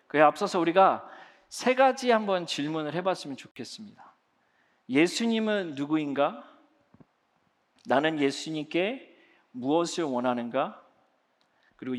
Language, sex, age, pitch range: Korean, male, 40-59, 140-210 Hz